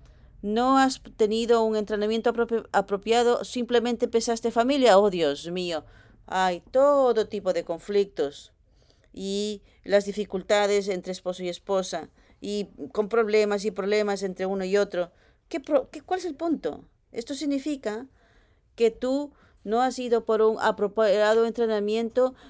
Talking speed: 135 wpm